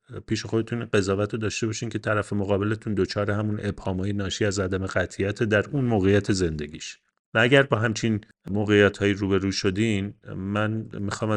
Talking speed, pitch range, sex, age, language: 155 wpm, 95-110 Hz, male, 30-49, Persian